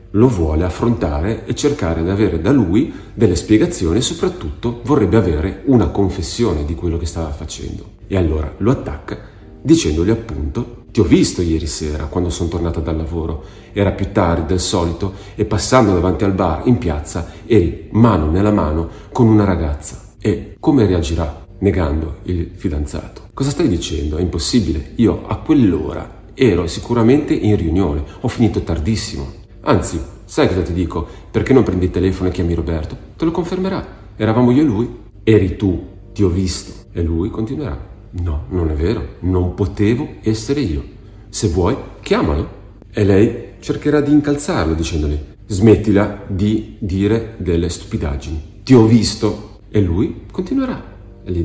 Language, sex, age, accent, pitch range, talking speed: Italian, male, 40-59, native, 85-110 Hz, 160 wpm